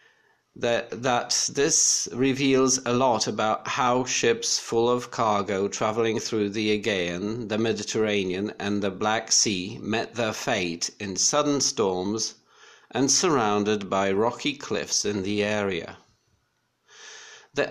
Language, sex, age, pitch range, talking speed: Polish, male, 50-69, 105-135 Hz, 120 wpm